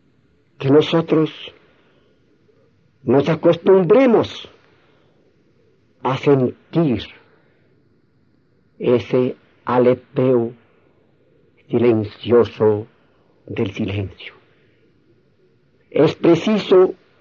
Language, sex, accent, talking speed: Spanish, male, Mexican, 45 wpm